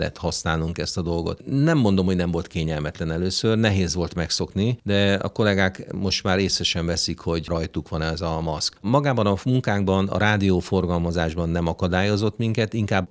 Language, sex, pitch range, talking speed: English, male, 85-105 Hz, 165 wpm